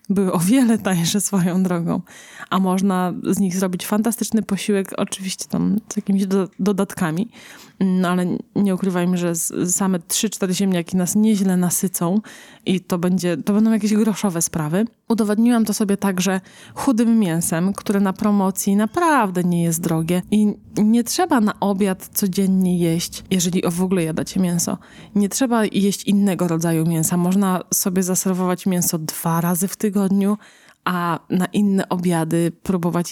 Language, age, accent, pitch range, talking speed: Polish, 20-39, native, 180-210 Hz, 150 wpm